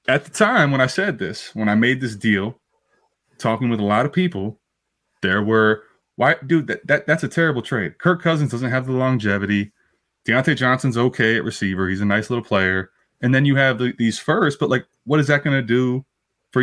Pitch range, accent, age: 110-145 Hz, American, 20-39